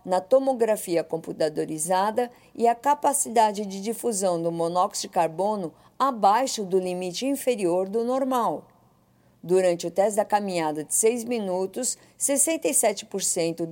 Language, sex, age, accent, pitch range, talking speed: Portuguese, female, 50-69, Brazilian, 175-240 Hz, 120 wpm